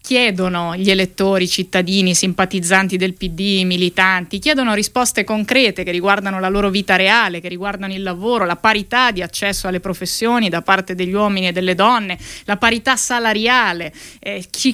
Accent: native